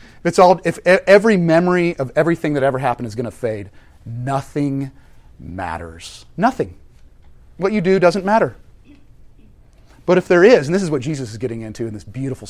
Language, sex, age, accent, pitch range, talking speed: English, male, 30-49, American, 110-175 Hz, 180 wpm